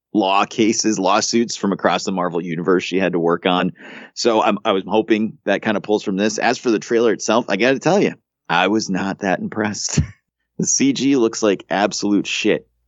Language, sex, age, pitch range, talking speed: English, male, 30-49, 80-110 Hz, 210 wpm